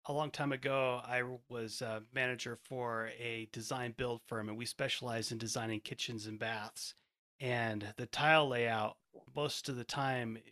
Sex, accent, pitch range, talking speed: male, American, 110-130 Hz, 165 wpm